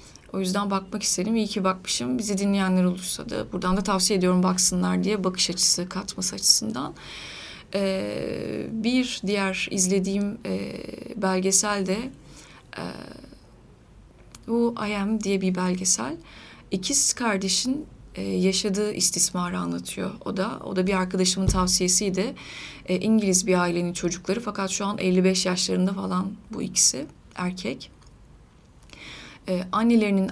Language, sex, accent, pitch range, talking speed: Turkish, female, native, 185-215 Hz, 125 wpm